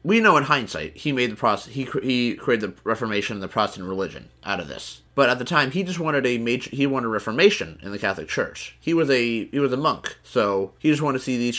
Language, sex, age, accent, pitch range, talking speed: English, male, 30-49, American, 105-135 Hz, 265 wpm